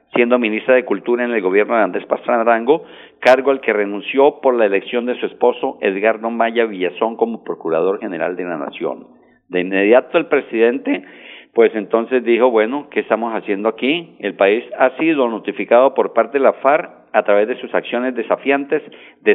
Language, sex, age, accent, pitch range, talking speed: Spanish, male, 50-69, Mexican, 115-160 Hz, 185 wpm